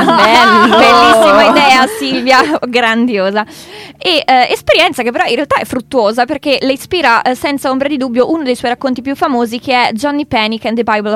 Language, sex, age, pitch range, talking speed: Italian, female, 20-39, 225-265 Hz, 195 wpm